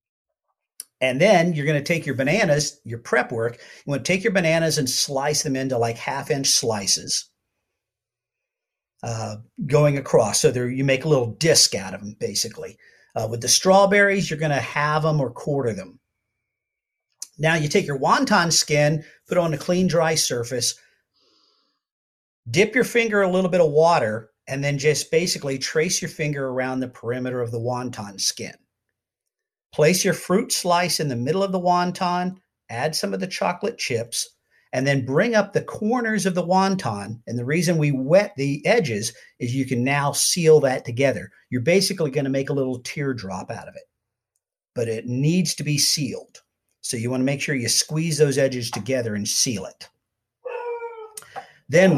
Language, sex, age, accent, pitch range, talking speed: English, male, 50-69, American, 125-180 Hz, 180 wpm